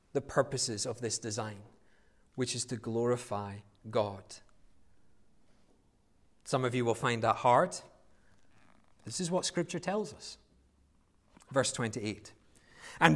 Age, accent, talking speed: 30-49, British, 120 wpm